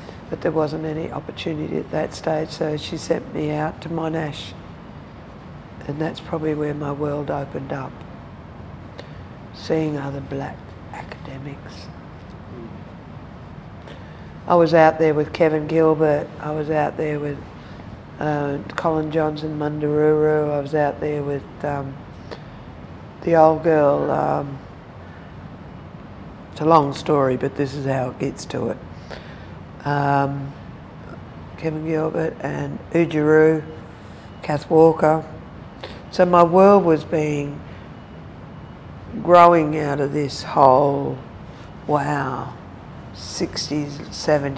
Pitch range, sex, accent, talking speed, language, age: 140-155 Hz, female, Australian, 115 wpm, English, 60-79